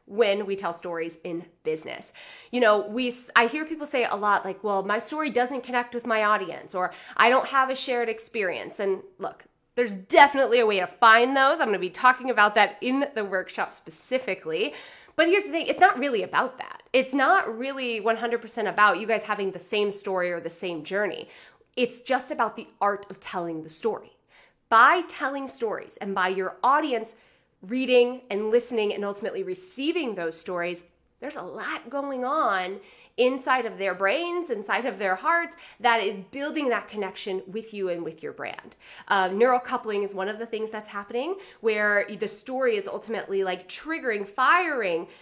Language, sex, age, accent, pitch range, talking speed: English, female, 20-39, American, 200-275 Hz, 185 wpm